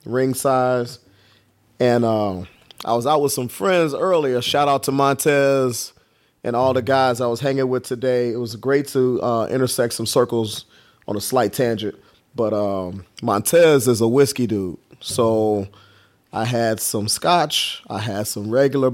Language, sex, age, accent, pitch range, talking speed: English, male, 30-49, American, 110-130 Hz, 165 wpm